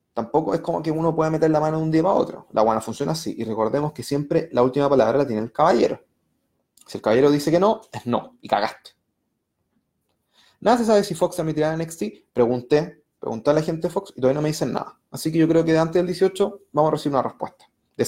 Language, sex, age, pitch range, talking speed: Spanish, male, 30-49, 135-180 Hz, 245 wpm